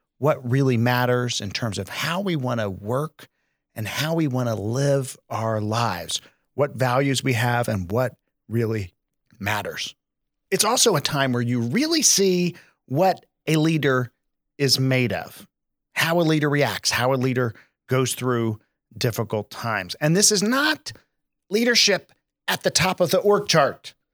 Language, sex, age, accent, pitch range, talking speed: English, male, 40-59, American, 120-175 Hz, 160 wpm